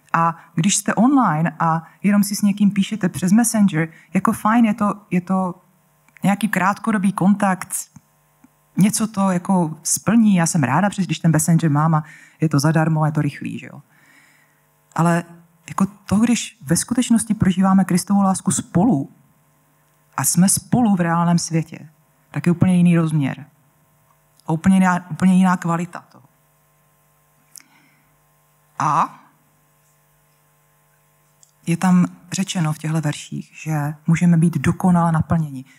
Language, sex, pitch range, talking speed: Czech, female, 155-195 Hz, 135 wpm